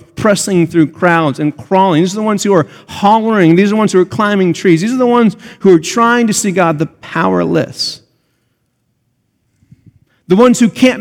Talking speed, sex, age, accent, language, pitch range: 195 wpm, male, 40-59, American, English, 155-215 Hz